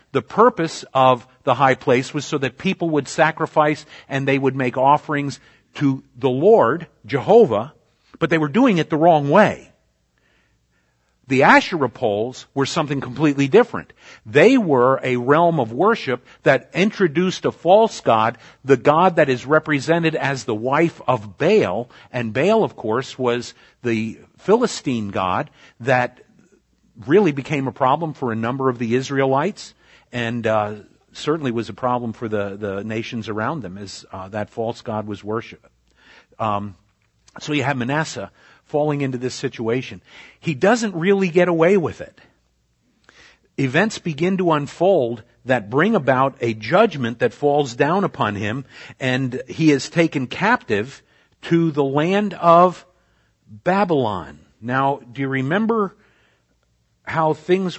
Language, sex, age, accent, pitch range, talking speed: Italian, male, 50-69, American, 115-160 Hz, 145 wpm